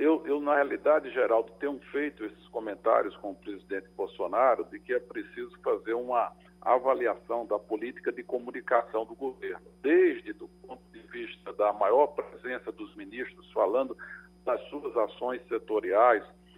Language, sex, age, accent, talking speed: Portuguese, male, 60-79, Brazilian, 150 wpm